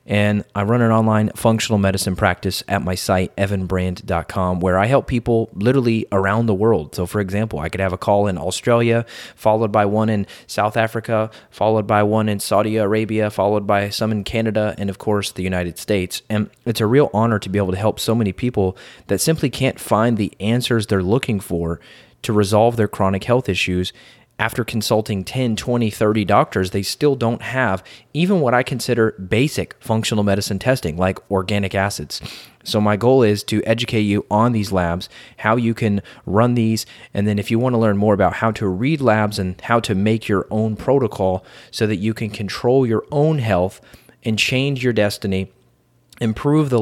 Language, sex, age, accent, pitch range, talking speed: English, male, 20-39, American, 100-115 Hz, 195 wpm